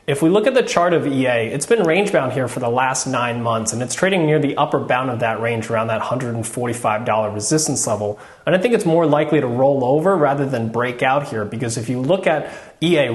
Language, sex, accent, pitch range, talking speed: English, male, American, 125-165 Hz, 235 wpm